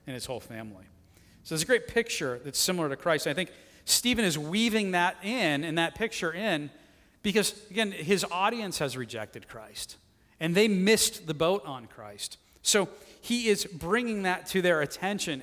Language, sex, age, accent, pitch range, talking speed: English, male, 40-59, American, 145-195 Hz, 175 wpm